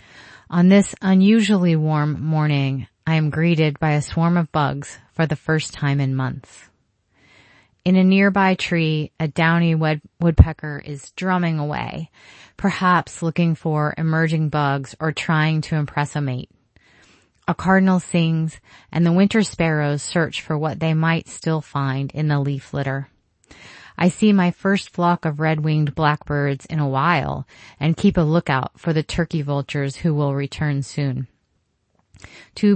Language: English